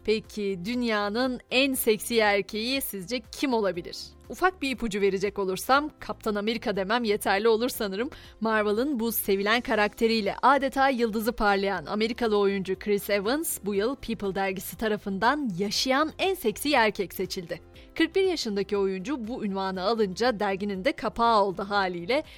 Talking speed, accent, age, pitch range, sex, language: 135 wpm, native, 30-49, 200-245 Hz, female, Turkish